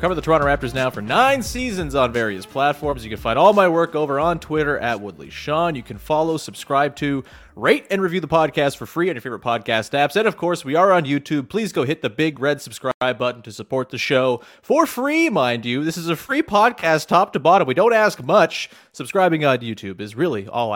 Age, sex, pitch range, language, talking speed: 30-49, male, 125-190 Hz, English, 235 wpm